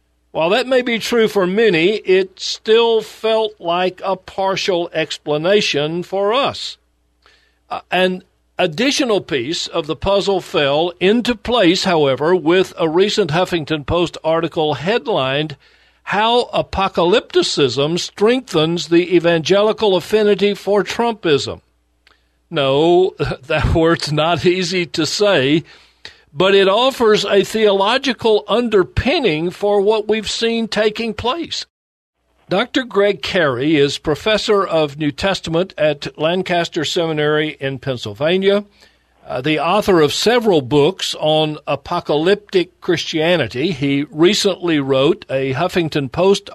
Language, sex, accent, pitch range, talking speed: English, male, American, 155-210 Hz, 115 wpm